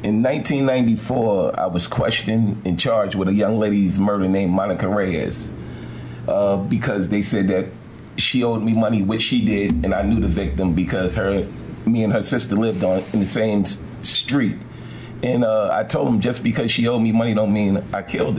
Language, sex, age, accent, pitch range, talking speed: English, male, 40-59, American, 100-115 Hz, 195 wpm